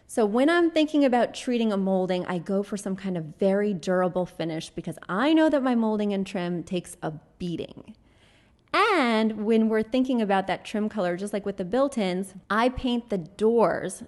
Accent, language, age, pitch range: American, English, 20-39, 185-245 Hz